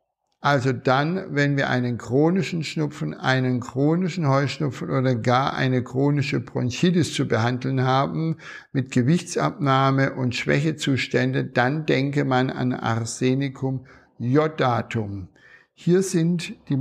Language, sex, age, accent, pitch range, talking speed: German, male, 60-79, German, 130-155 Hz, 110 wpm